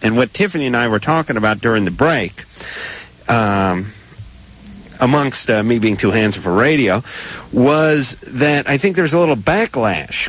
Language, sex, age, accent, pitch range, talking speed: English, male, 40-59, American, 105-145 Hz, 165 wpm